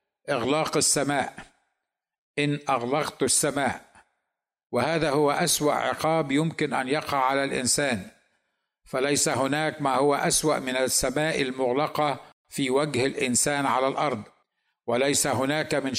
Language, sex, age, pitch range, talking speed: Arabic, male, 60-79, 130-150 Hz, 115 wpm